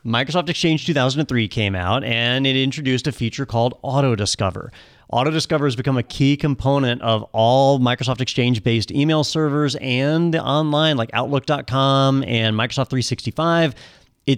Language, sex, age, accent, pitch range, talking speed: English, male, 30-49, American, 120-150 Hz, 135 wpm